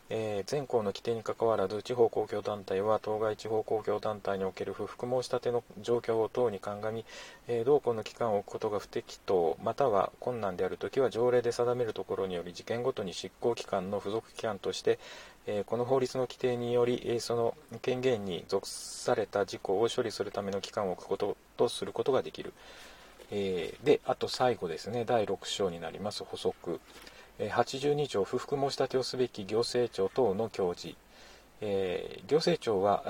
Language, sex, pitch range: Japanese, male, 110-130 Hz